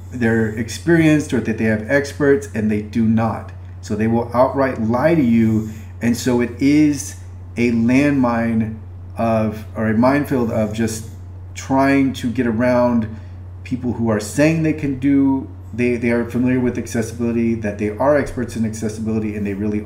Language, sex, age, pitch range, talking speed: English, male, 30-49, 105-125 Hz, 170 wpm